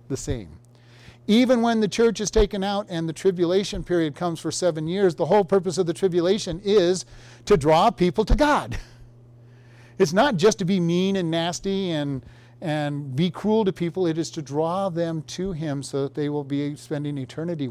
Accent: American